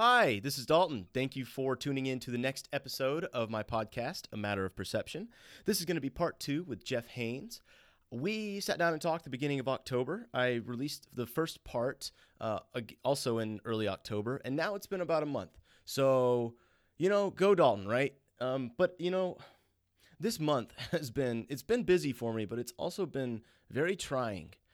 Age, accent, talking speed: 30-49, American, 195 wpm